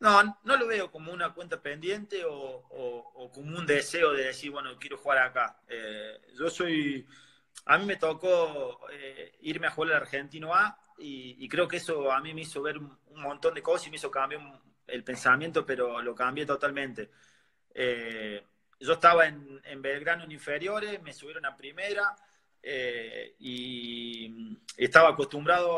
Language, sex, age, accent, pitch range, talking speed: Spanish, male, 30-49, Argentinian, 135-185 Hz, 170 wpm